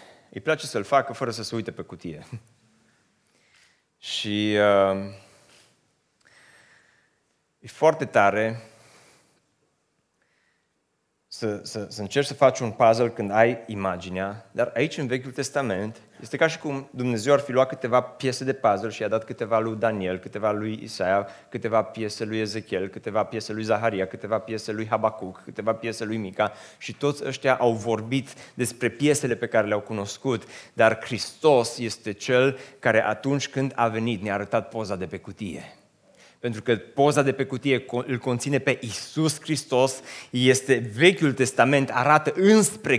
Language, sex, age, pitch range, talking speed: Romanian, male, 30-49, 115-175 Hz, 155 wpm